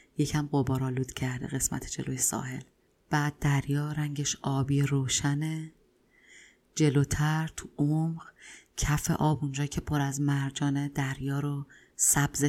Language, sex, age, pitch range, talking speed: Persian, female, 30-49, 135-155 Hz, 120 wpm